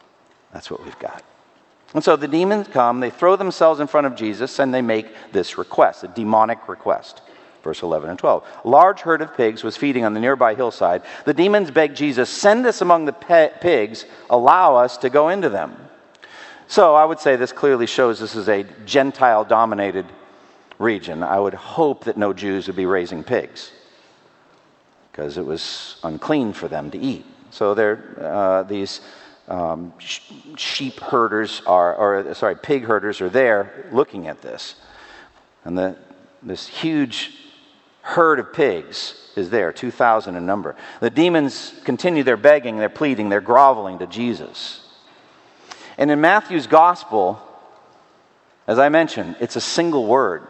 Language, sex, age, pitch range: English, male, 50-69, 100-165 Hz